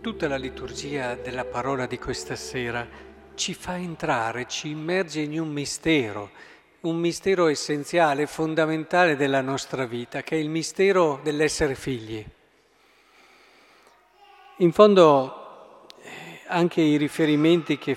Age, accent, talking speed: 50-69, native, 115 wpm